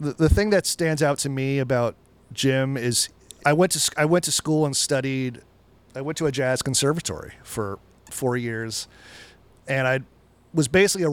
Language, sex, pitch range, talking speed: English, male, 120-150 Hz, 180 wpm